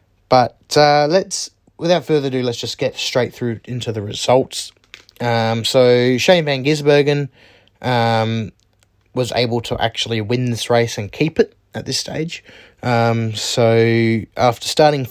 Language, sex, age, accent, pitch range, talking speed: English, male, 20-39, Australian, 110-140 Hz, 145 wpm